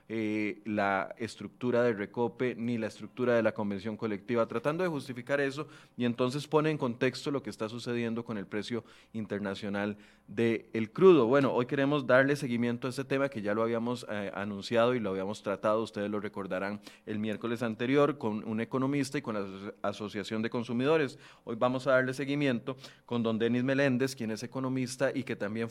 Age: 30-49